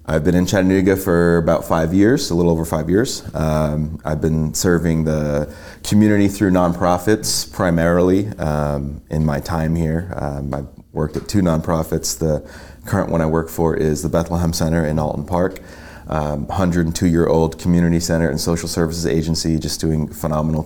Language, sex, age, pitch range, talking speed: English, male, 30-49, 75-90 Hz, 165 wpm